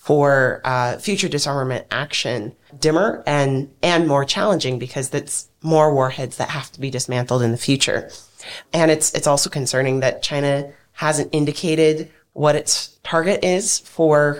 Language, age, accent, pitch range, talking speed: English, 30-49, American, 130-155 Hz, 150 wpm